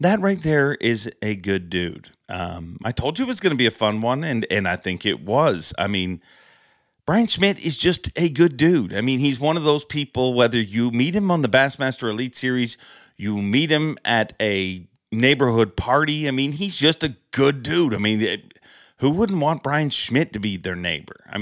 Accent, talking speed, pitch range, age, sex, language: American, 215 wpm, 100-140 Hz, 40-59, male, English